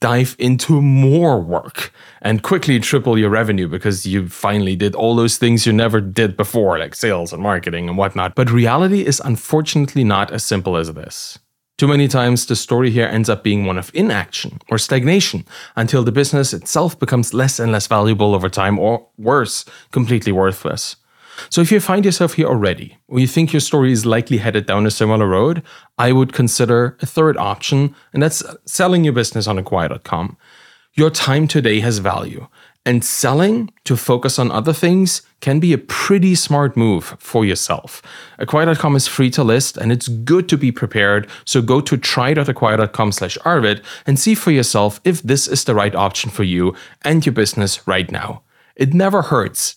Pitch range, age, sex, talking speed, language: 105-145 Hz, 30-49, male, 180 wpm, English